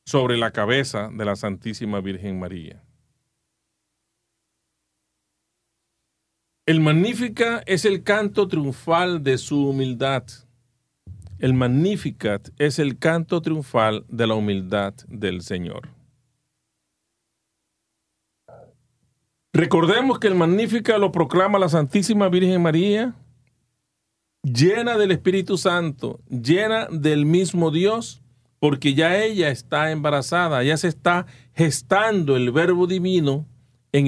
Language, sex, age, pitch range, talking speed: Spanish, male, 40-59, 125-190 Hz, 105 wpm